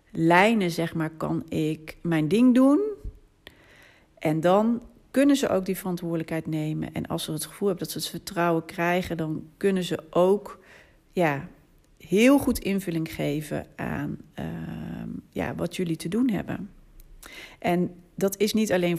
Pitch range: 165-195 Hz